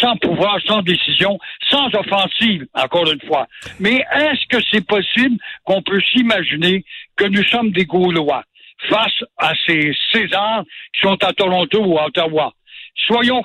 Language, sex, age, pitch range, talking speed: French, male, 60-79, 180-220 Hz, 150 wpm